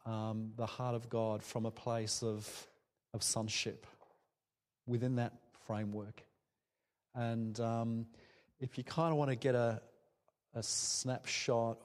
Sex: male